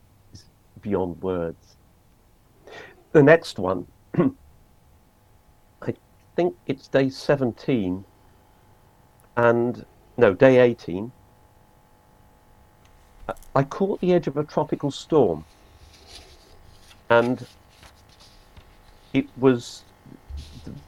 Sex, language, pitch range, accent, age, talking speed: male, English, 95-120 Hz, British, 50-69, 80 wpm